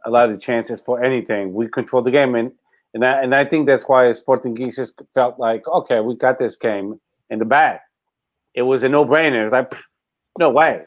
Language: English